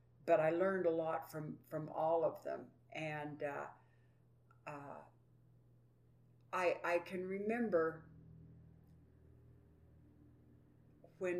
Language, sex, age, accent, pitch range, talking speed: English, female, 60-79, American, 125-170 Hz, 95 wpm